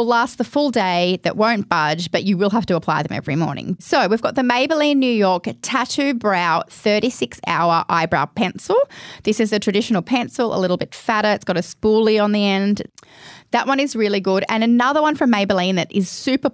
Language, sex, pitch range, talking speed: English, female, 175-225 Hz, 210 wpm